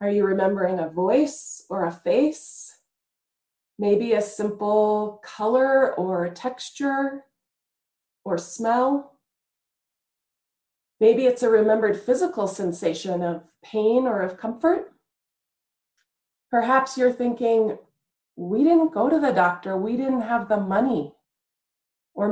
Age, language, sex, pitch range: 30-49, English, female, 200-255 Hz